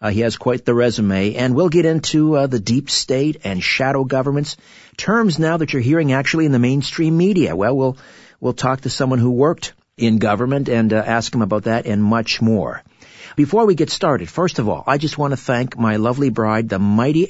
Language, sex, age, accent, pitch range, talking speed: English, male, 50-69, American, 105-140 Hz, 220 wpm